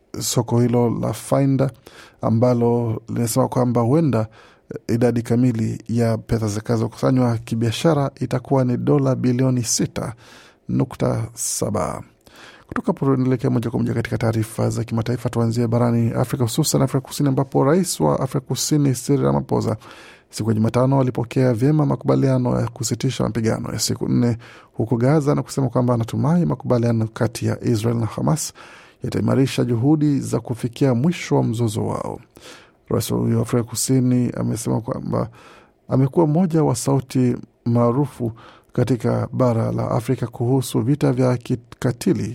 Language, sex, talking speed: Swahili, male, 130 wpm